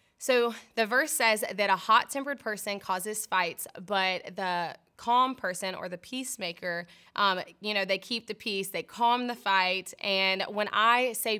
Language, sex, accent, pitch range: English, female, American, 190-225 Hz